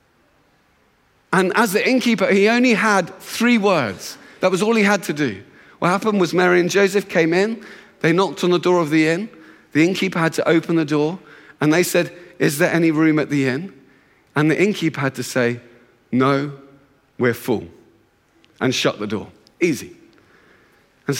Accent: British